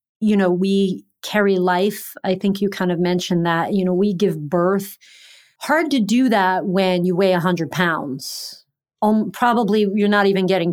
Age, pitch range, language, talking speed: 40-59, 185-220 Hz, English, 185 wpm